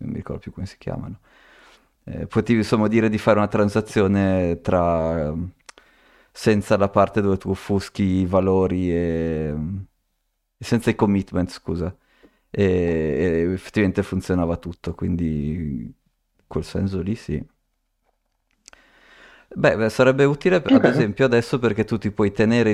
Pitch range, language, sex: 85-105 Hz, Italian, male